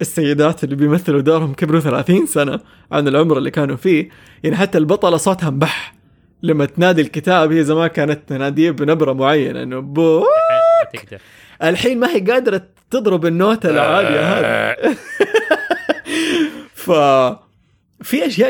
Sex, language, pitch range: male, English, 145-190 Hz